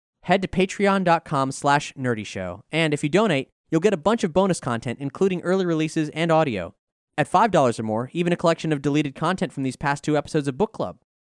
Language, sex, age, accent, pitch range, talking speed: English, male, 20-39, American, 125-170 Hz, 200 wpm